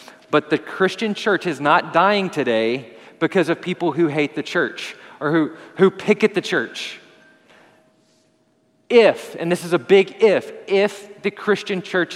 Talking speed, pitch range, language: 160 wpm, 175-220 Hz, English